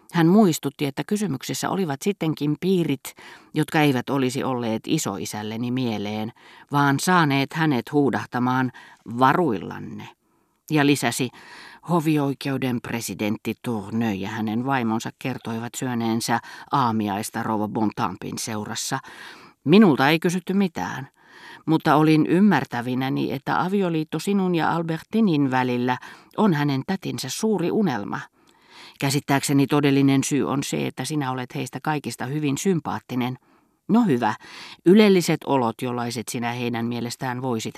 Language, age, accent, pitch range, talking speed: Finnish, 40-59, native, 120-155 Hz, 110 wpm